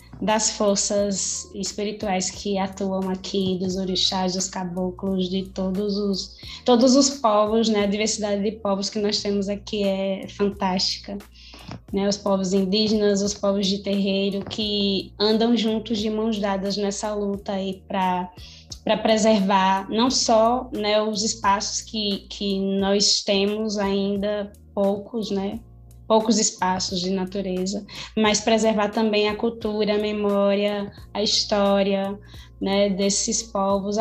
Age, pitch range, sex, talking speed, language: 20-39, 195-225 Hz, female, 130 wpm, Portuguese